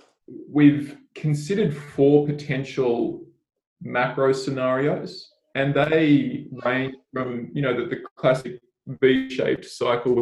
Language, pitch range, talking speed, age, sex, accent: English, 125-150 Hz, 100 wpm, 20-39, male, Australian